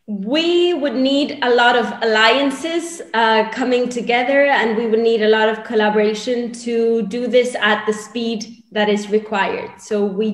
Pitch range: 210-255 Hz